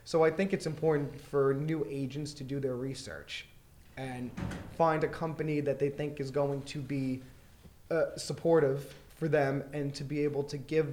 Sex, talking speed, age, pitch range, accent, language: male, 180 wpm, 20-39, 130-150 Hz, American, English